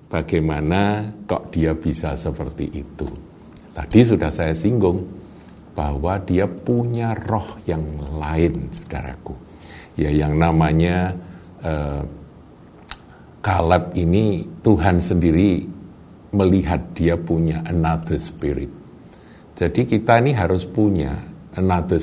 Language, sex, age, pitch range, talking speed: Indonesian, male, 50-69, 80-110 Hz, 100 wpm